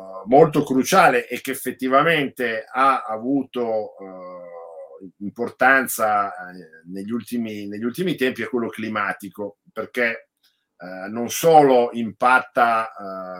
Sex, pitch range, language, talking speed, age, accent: male, 90-105 Hz, Italian, 105 wpm, 50-69, native